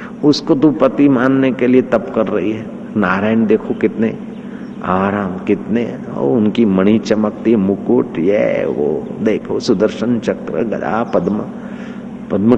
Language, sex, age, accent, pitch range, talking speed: Hindi, male, 50-69, native, 110-150 Hz, 135 wpm